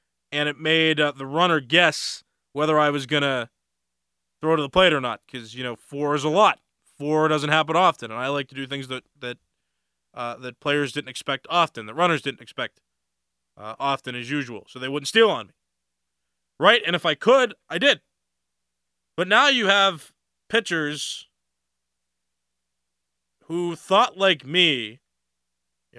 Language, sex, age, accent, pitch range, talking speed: English, male, 20-39, American, 110-160 Hz, 170 wpm